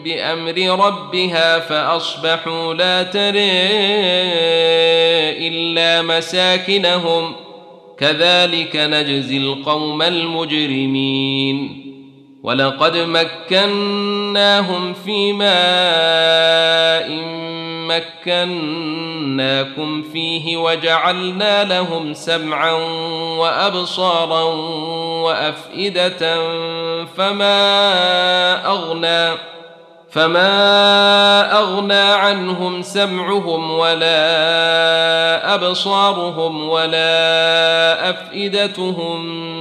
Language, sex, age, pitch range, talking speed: Arabic, male, 30-49, 165-180 Hz, 50 wpm